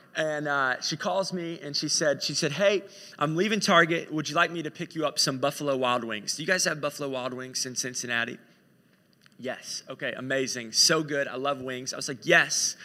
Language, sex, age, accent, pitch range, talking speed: English, male, 30-49, American, 150-205 Hz, 220 wpm